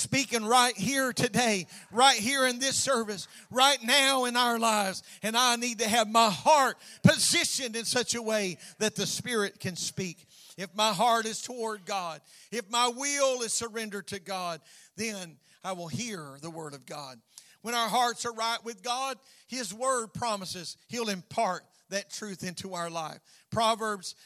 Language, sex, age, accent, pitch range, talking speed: English, male, 50-69, American, 195-245 Hz, 175 wpm